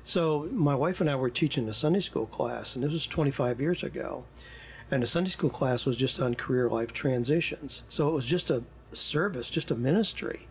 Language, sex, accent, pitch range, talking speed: English, male, American, 125-155 Hz, 210 wpm